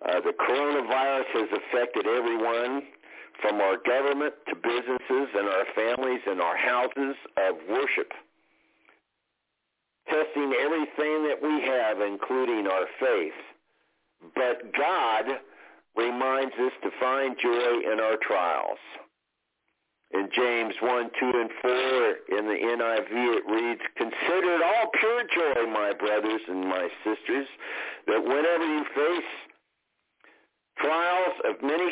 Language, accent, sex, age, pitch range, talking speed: English, American, male, 60-79, 120-175 Hz, 120 wpm